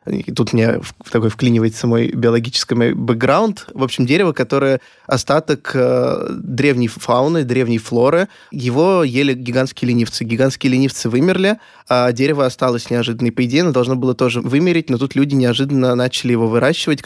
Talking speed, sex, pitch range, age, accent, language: 150 wpm, male, 120-145 Hz, 20-39, native, Russian